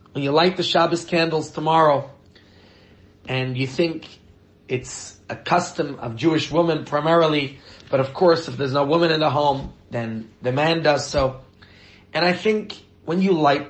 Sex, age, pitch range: male, 30-49, 115-160 Hz